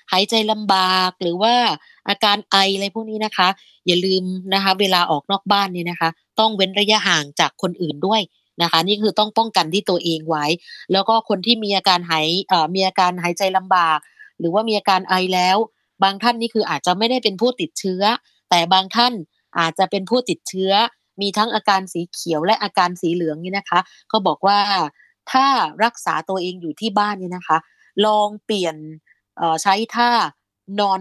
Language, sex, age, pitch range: Thai, female, 20-39, 175-215 Hz